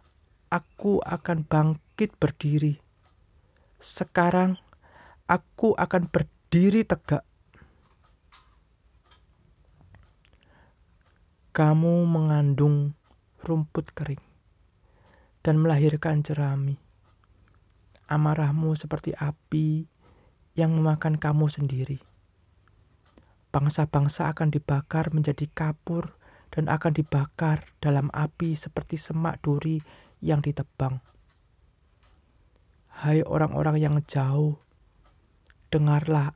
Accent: native